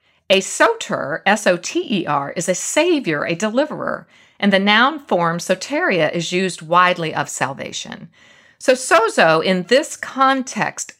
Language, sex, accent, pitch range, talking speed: English, female, American, 175-275 Hz, 125 wpm